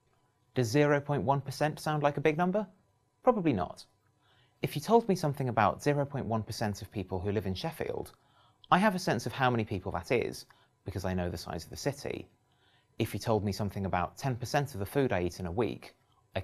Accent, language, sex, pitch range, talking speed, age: British, English, male, 100-140 Hz, 205 wpm, 30-49